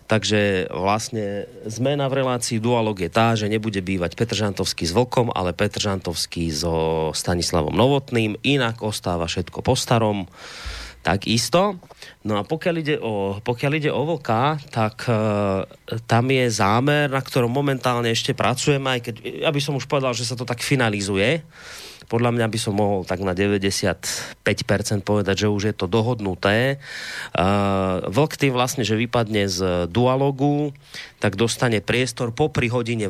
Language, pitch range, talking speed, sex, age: Slovak, 100-125 Hz, 155 wpm, male, 30-49